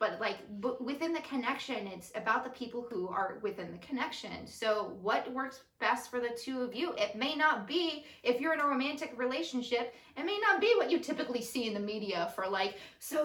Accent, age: American, 20-39